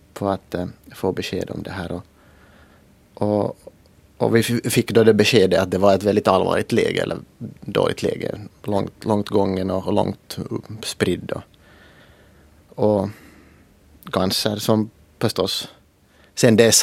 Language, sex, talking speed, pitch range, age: Finnish, male, 140 wpm, 100-120 Hz, 30-49